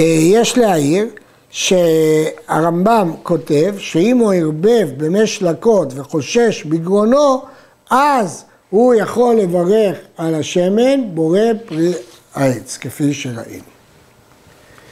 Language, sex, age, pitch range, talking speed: Hebrew, male, 60-79, 165-235 Hz, 90 wpm